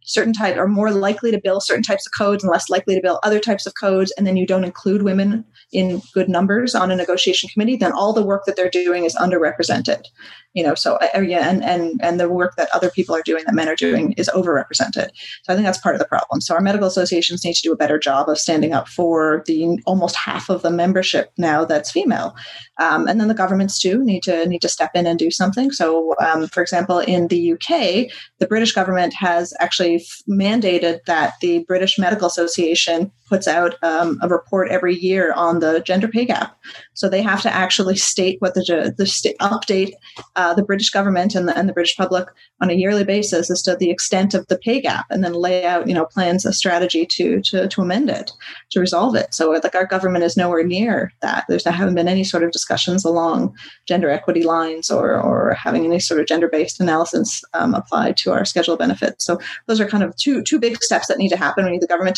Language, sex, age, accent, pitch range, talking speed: English, female, 30-49, American, 175-200 Hz, 230 wpm